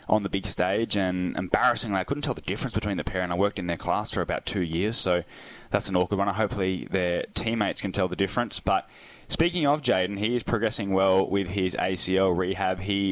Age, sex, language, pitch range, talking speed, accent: 10-29, male, English, 90-105 Hz, 230 wpm, Australian